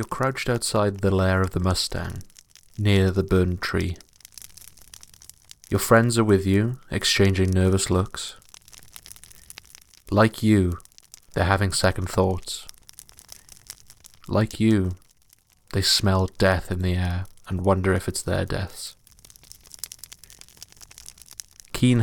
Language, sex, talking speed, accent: English, male, 110 wpm, British